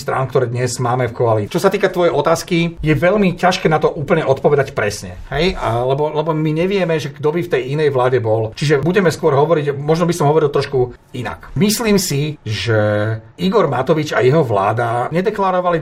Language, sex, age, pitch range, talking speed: Slovak, male, 40-59, 130-170 Hz, 195 wpm